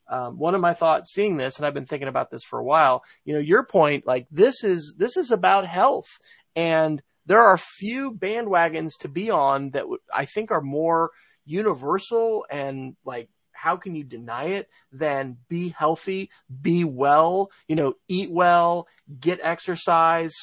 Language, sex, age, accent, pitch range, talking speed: English, male, 30-49, American, 145-190 Hz, 180 wpm